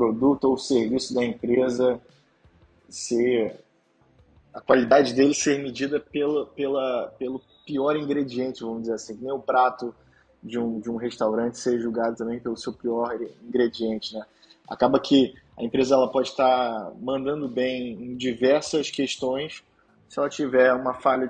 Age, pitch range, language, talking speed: 20-39, 120-140 Hz, Portuguese, 145 wpm